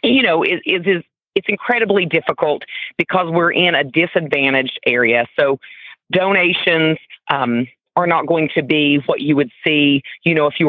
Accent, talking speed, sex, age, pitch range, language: American, 170 wpm, female, 40-59, 140-190 Hz, English